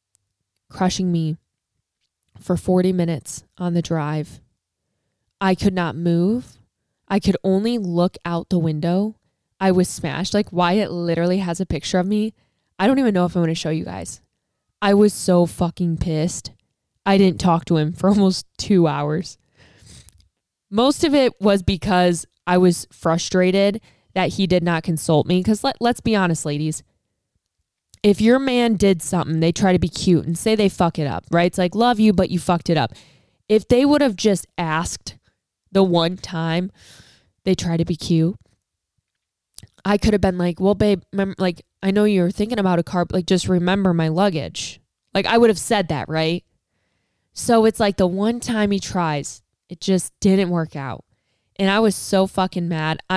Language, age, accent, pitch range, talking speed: English, 20-39, American, 160-195 Hz, 185 wpm